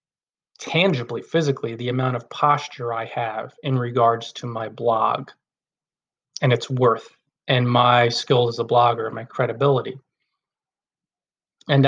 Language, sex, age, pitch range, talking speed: English, male, 30-49, 125-145 Hz, 130 wpm